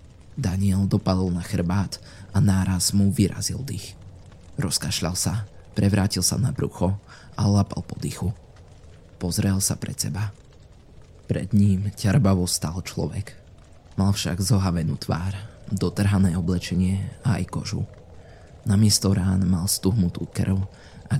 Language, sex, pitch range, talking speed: Slovak, male, 90-100 Hz, 120 wpm